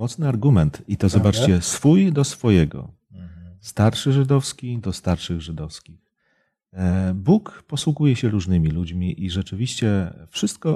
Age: 40-59